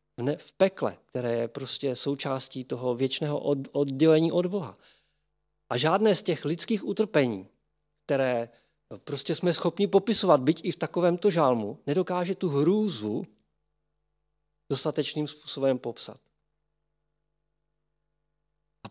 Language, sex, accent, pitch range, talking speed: Czech, male, native, 140-180 Hz, 105 wpm